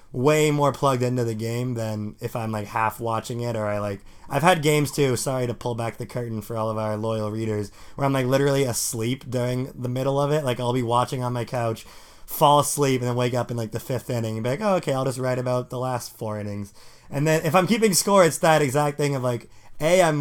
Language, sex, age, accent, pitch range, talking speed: English, male, 20-39, American, 115-140 Hz, 260 wpm